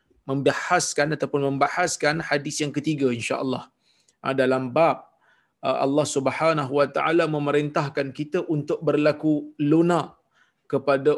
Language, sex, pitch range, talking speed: Malayalam, male, 145-170 Hz, 105 wpm